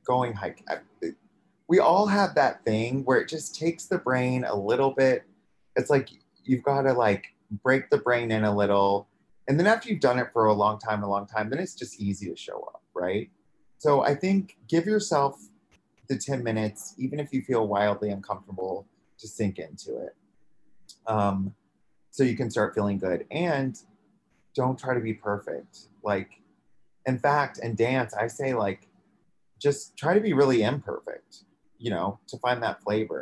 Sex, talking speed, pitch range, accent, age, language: male, 180 wpm, 105-140 Hz, American, 30-49, English